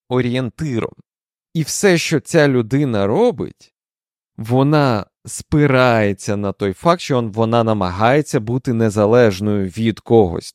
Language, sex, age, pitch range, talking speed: Ukrainian, male, 20-39, 115-150 Hz, 110 wpm